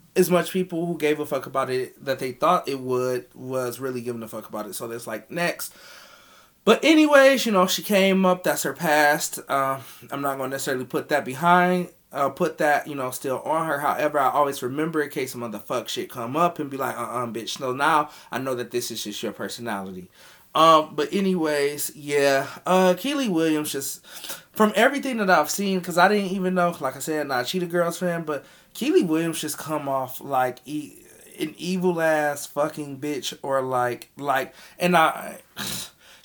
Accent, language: American, English